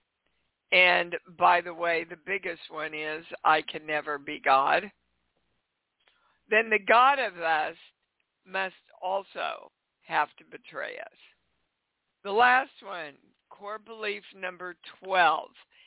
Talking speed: 115 wpm